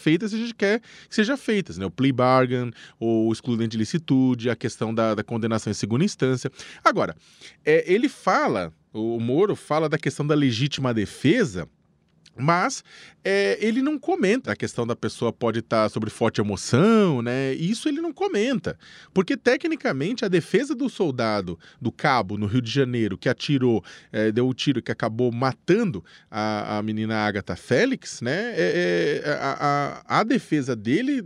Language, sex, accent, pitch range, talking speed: Portuguese, male, Brazilian, 125-190 Hz, 175 wpm